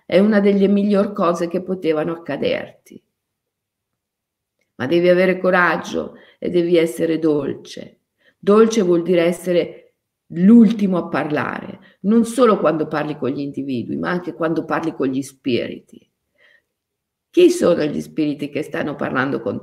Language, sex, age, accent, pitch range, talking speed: Italian, female, 50-69, native, 165-215 Hz, 140 wpm